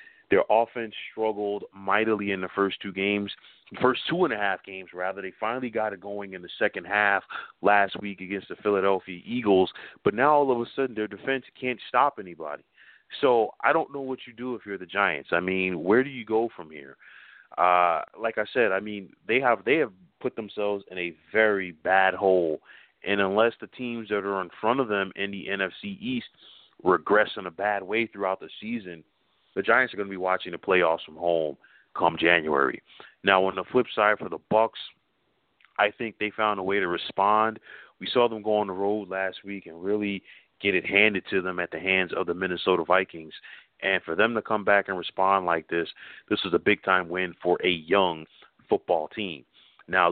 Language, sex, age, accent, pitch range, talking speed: English, male, 30-49, American, 95-110 Hz, 200 wpm